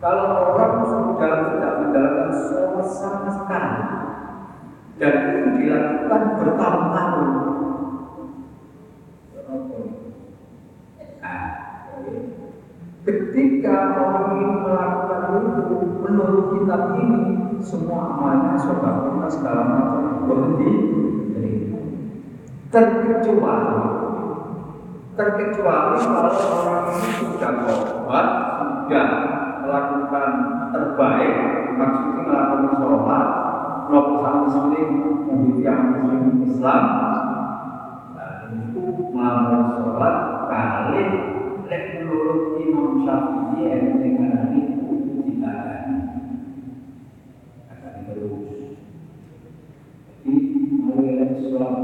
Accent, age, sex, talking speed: native, 50-69, male, 40 wpm